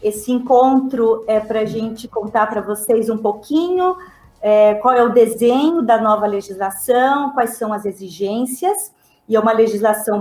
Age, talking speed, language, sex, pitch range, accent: 40-59, 155 wpm, Portuguese, female, 205-240 Hz, Brazilian